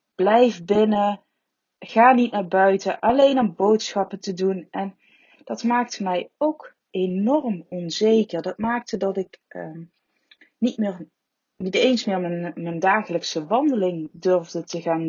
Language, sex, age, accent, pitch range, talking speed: Dutch, female, 20-39, Dutch, 175-220 Hz, 140 wpm